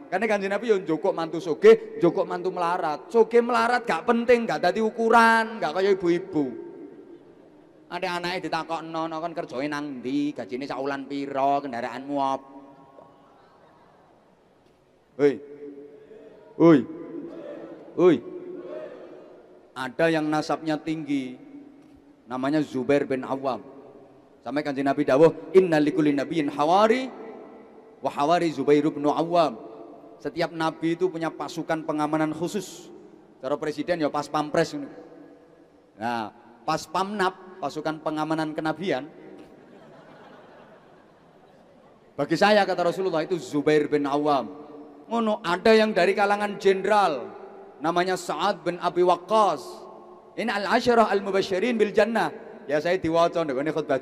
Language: Indonesian